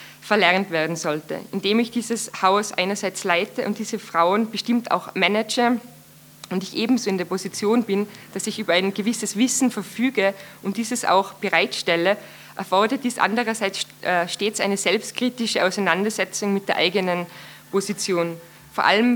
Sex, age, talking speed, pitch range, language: female, 20-39, 145 wpm, 190-225 Hz, German